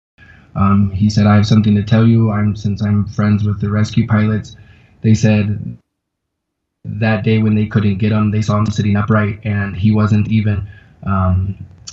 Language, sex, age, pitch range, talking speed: English, male, 20-39, 100-110 Hz, 180 wpm